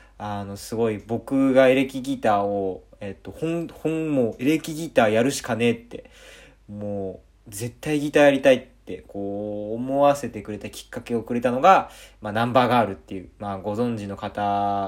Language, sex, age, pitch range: Japanese, male, 20-39, 105-130 Hz